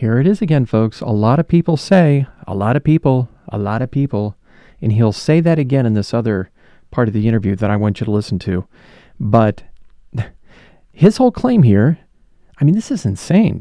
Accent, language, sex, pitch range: American, English, male, 105-145 Hz